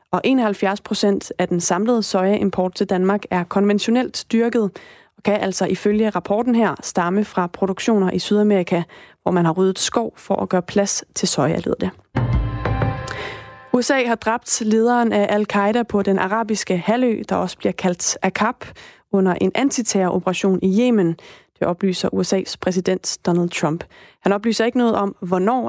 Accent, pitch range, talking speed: native, 185-215 Hz, 155 wpm